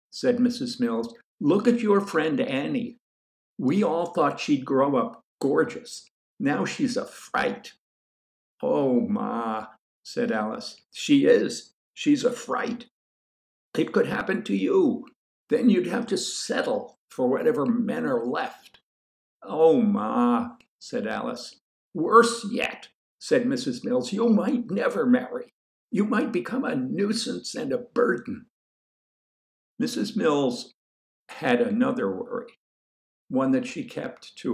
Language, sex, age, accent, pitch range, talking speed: English, male, 60-79, American, 230-255 Hz, 130 wpm